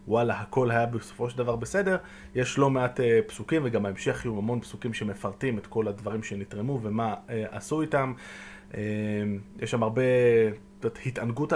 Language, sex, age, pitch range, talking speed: Hebrew, male, 20-39, 110-135 Hz, 165 wpm